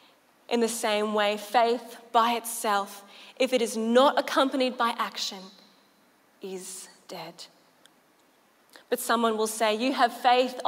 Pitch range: 210-250 Hz